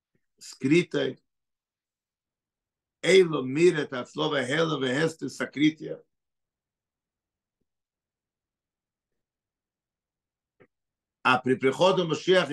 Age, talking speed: 50-69, 55 wpm